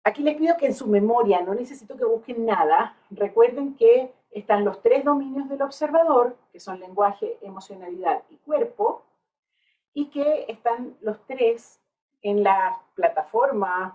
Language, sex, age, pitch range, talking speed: Spanish, female, 50-69, 205-320 Hz, 145 wpm